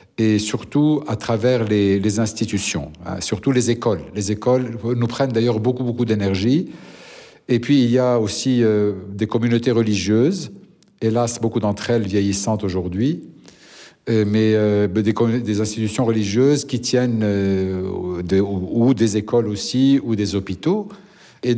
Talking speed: 155 wpm